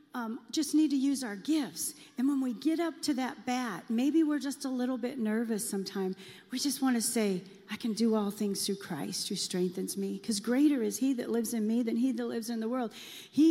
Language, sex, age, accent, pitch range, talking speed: English, female, 40-59, American, 205-255 Hz, 235 wpm